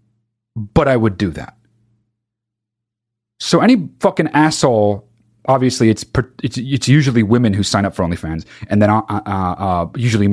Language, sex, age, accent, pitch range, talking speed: English, male, 30-49, American, 110-140 Hz, 155 wpm